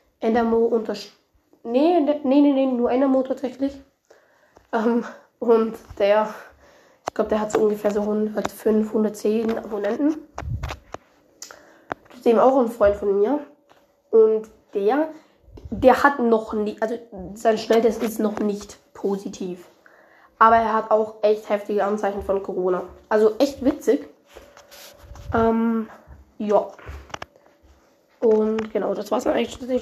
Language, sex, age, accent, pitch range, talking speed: German, female, 20-39, German, 215-275 Hz, 130 wpm